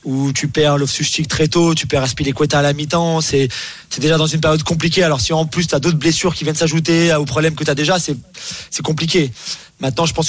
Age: 30-49